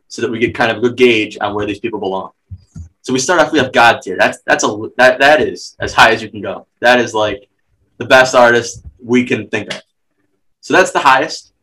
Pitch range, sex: 115-140 Hz, male